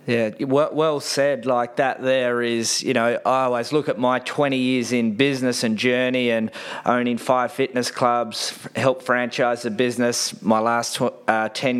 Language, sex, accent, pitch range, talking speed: English, male, Australian, 120-135 Hz, 170 wpm